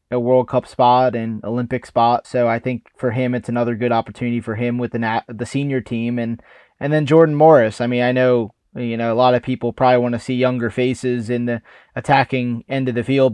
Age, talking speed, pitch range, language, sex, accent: 20-39, 230 wpm, 115-125 Hz, English, male, American